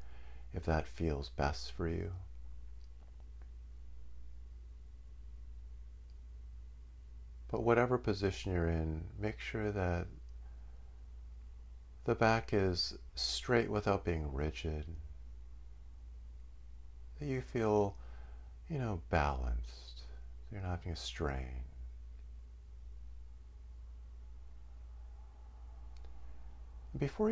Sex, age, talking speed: male, 50-69, 70 wpm